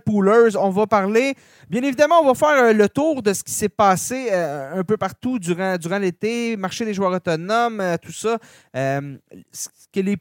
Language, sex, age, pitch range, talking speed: French, male, 30-49, 155-210 Hz, 190 wpm